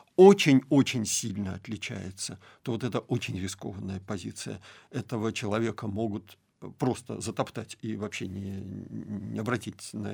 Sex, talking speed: male, 120 wpm